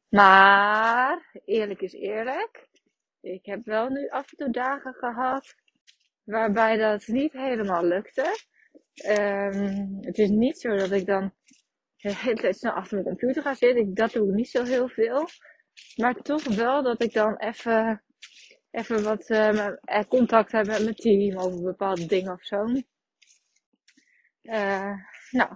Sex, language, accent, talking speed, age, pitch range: female, Dutch, Dutch, 140 wpm, 20-39, 200-255 Hz